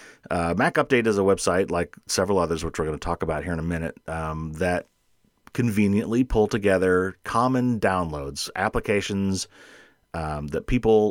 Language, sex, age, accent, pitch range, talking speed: English, male, 30-49, American, 80-100 Hz, 160 wpm